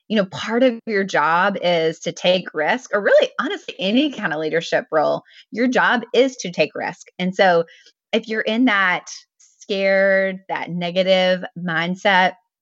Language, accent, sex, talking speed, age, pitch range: English, American, female, 160 wpm, 20-39, 170-210 Hz